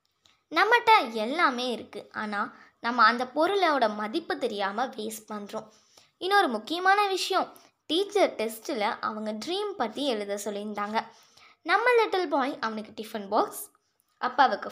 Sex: female